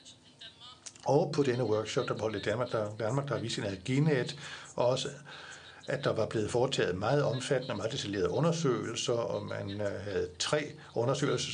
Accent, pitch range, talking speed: native, 110-140 Hz, 160 wpm